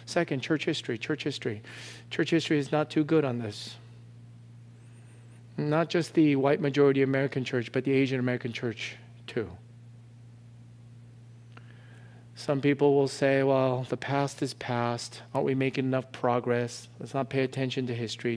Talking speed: 150 wpm